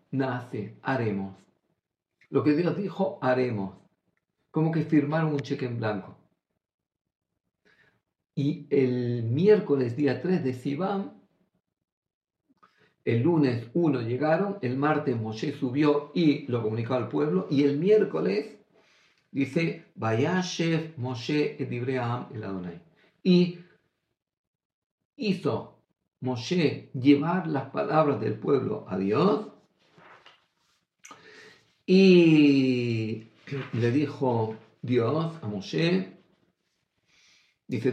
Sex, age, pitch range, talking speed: male, 50-69, 125-160 Hz, 95 wpm